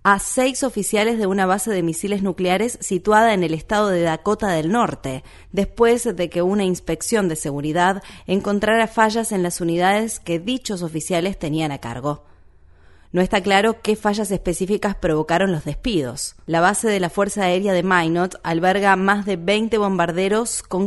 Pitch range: 170-210 Hz